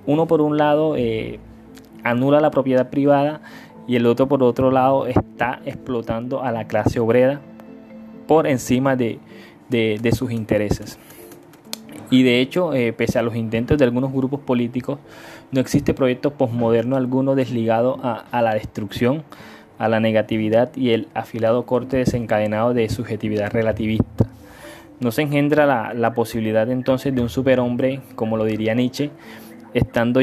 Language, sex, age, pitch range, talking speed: Spanish, male, 20-39, 110-130 Hz, 150 wpm